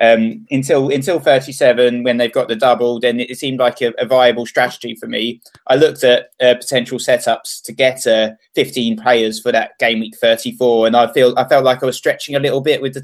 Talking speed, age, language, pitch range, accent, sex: 225 wpm, 20-39, English, 115-135 Hz, British, male